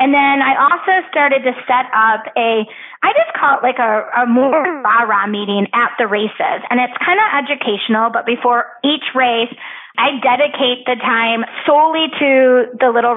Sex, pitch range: female, 230-275 Hz